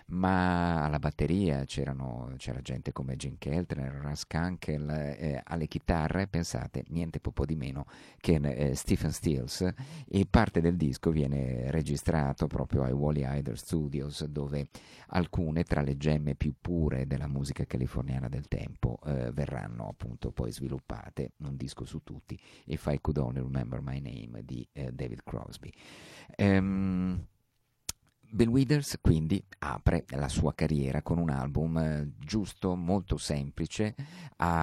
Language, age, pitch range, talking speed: Italian, 50-69, 70-85 Hz, 140 wpm